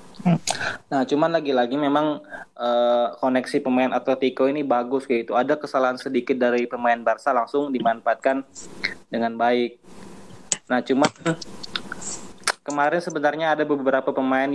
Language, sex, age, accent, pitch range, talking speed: Indonesian, male, 20-39, native, 120-145 Hz, 115 wpm